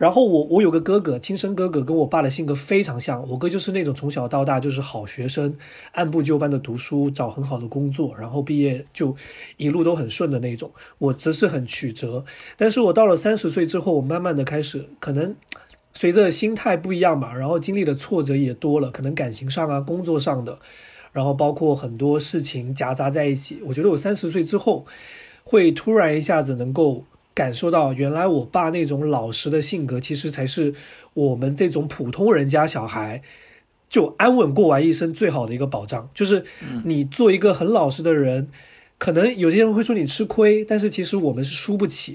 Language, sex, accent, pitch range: Chinese, male, native, 135-175 Hz